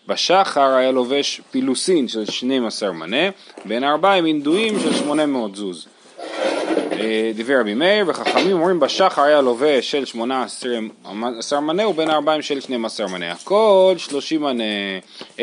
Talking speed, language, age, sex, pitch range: 125 wpm, Hebrew, 30-49, male, 125-170 Hz